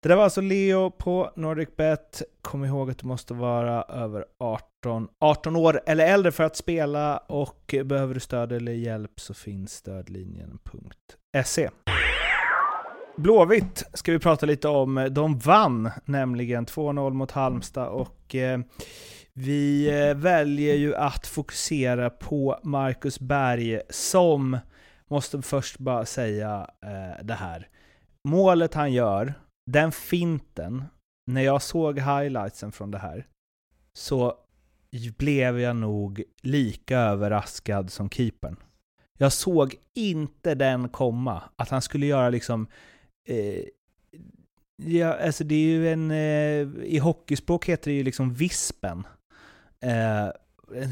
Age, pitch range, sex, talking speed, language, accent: 30-49, 115-150 Hz, male, 125 wpm, Swedish, native